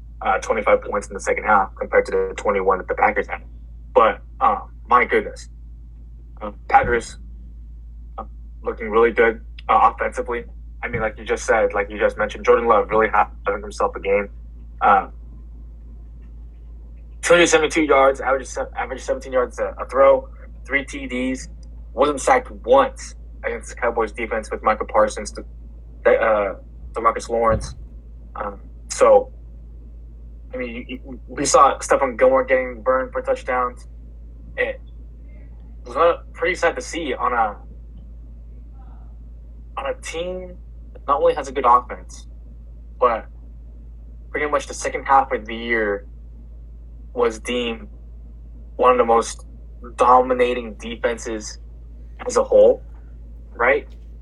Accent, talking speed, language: American, 135 wpm, English